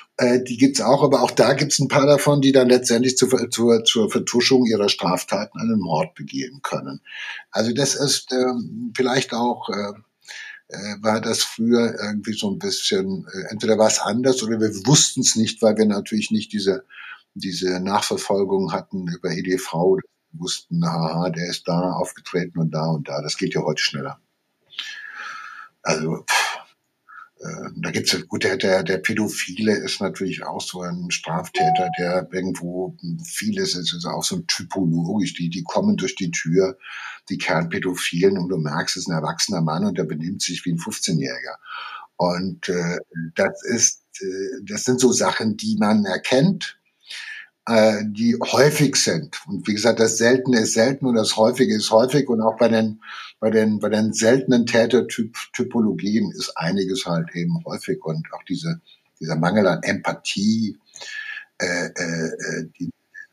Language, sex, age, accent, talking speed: German, male, 60-79, German, 160 wpm